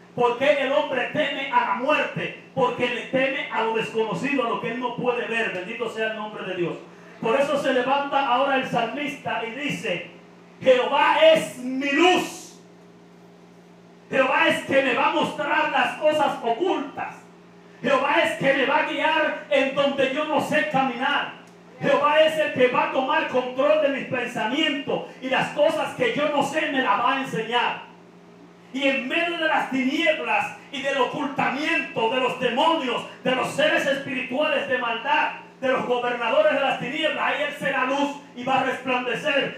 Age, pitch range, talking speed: 40-59, 245-290 Hz, 175 wpm